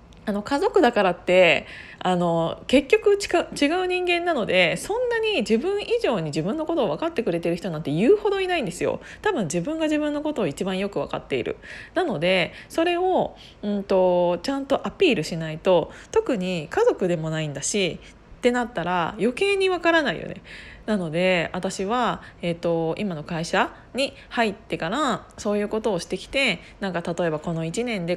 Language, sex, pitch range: Japanese, female, 180-245 Hz